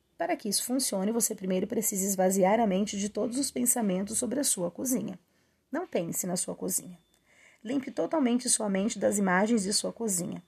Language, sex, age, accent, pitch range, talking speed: Portuguese, female, 30-49, Brazilian, 185-235 Hz, 185 wpm